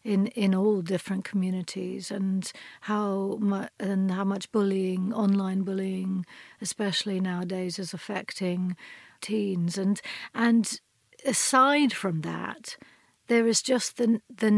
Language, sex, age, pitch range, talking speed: English, female, 60-79, 190-220 Hz, 120 wpm